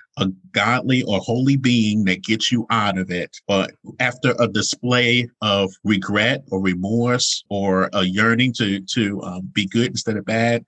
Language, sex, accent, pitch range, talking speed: English, male, American, 100-120 Hz, 170 wpm